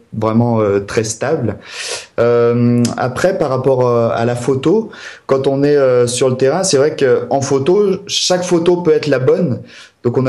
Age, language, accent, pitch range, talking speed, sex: 30-49, French, French, 120-160 Hz, 180 wpm, male